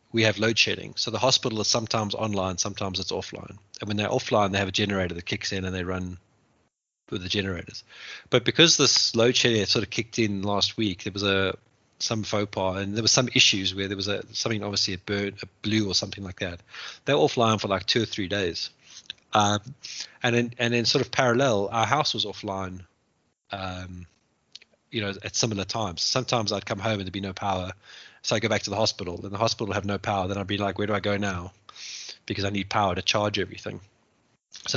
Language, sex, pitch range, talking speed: English, male, 95-115 Hz, 225 wpm